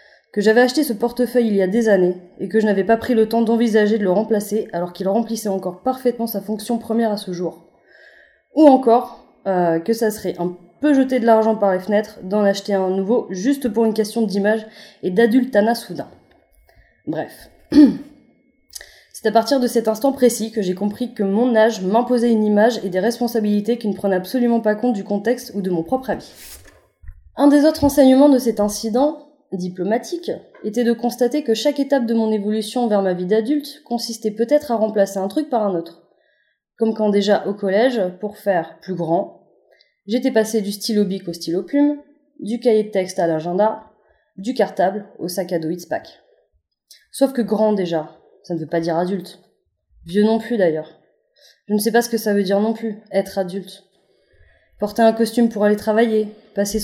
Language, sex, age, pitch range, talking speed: French, female, 20-39, 195-240 Hz, 200 wpm